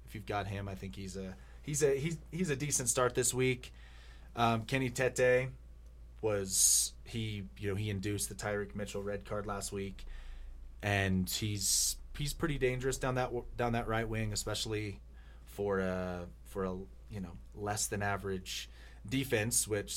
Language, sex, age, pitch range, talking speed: English, male, 30-49, 95-115 Hz, 170 wpm